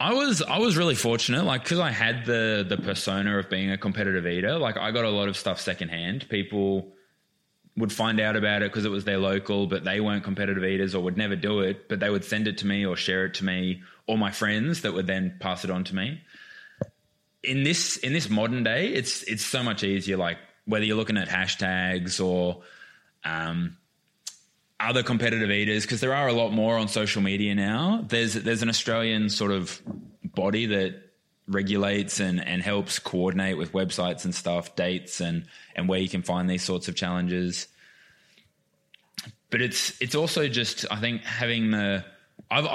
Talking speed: 195 wpm